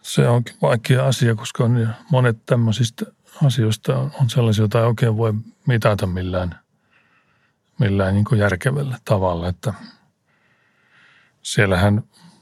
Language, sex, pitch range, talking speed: Finnish, male, 100-125 Hz, 105 wpm